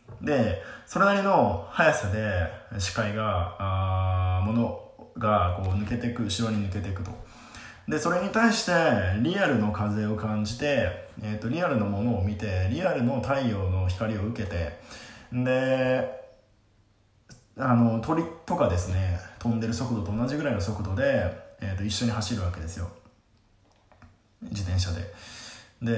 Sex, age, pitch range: male, 20-39, 95-120 Hz